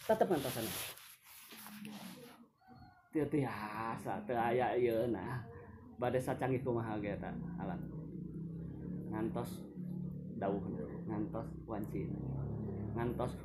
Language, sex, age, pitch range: Indonesian, male, 20-39, 115-170 Hz